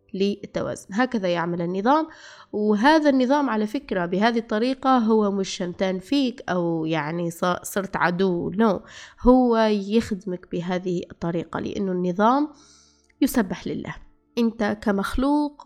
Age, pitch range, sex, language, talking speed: 20-39, 190-235 Hz, female, Arabic, 110 wpm